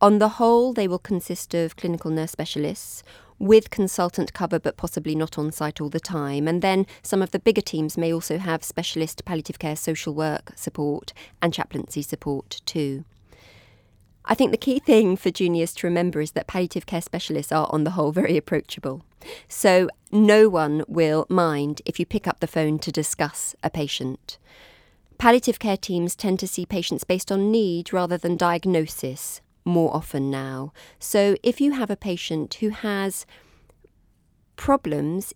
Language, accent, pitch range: English, British, 160-205 Hz